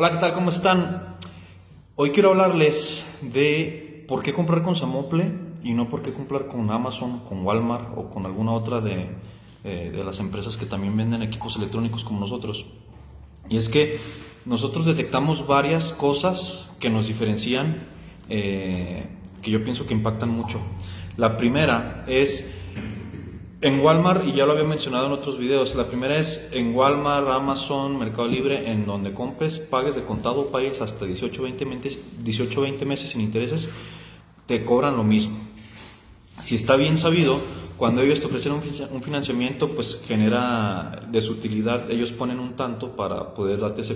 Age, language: 30-49, Spanish